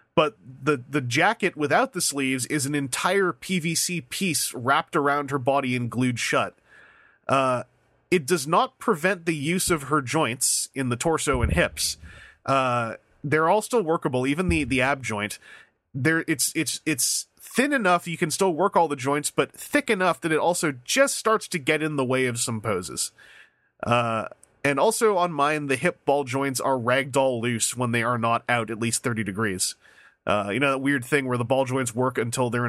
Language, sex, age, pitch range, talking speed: English, male, 30-49, 120-165 Hz, 195 wpm